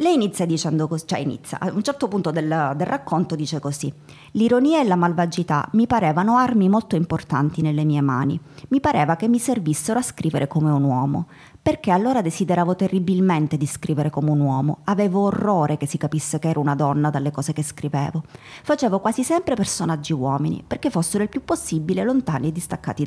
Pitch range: 150-205 Hz